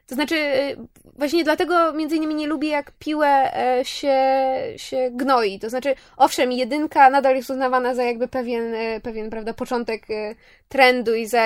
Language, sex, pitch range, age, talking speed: Polish, female, 235-280 Hz, 20-39, 150 wpm